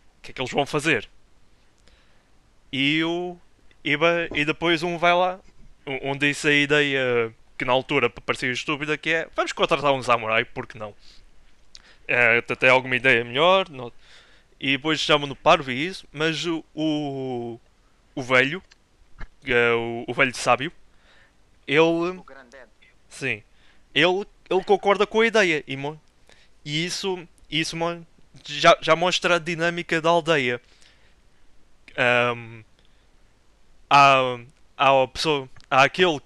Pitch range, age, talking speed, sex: 120-160 Hz, 20-39, 140 wpm, male